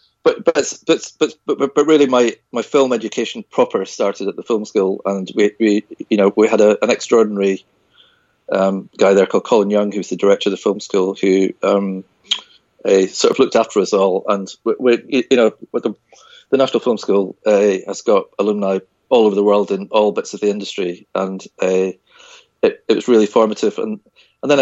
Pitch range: 100-115 Hz